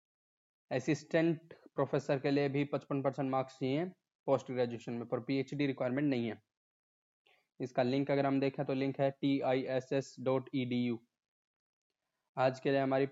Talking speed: 140 wpm